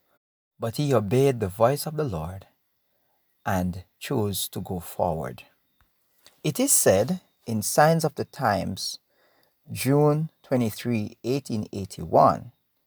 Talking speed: 110 wpm